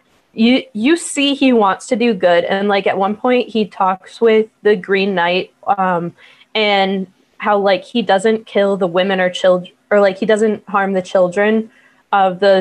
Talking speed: 185 wpm